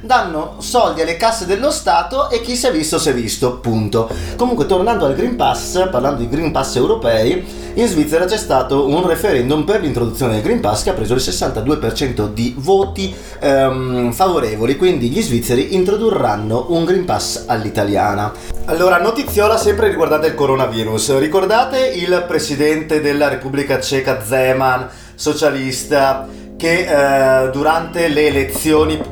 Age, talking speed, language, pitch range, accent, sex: 30-49, 150 wpm, Italian, 125-180 Hz, native, male